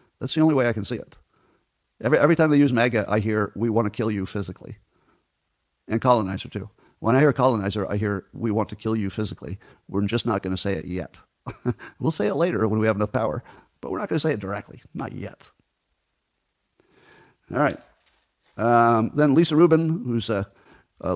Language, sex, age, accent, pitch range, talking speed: English, male, 50-69, American, 105-145 Hz, 205 wpm